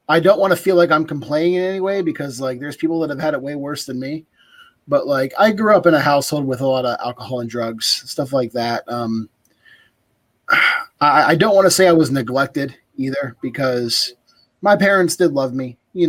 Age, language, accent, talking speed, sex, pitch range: 30-49, English, American, 220 wpm, male, 120-150 Hz